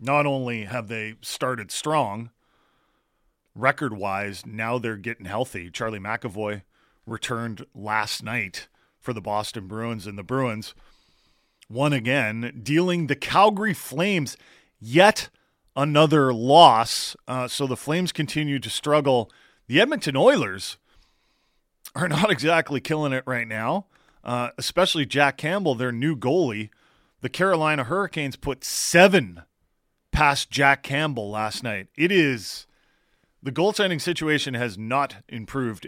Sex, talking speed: male, 125 wpm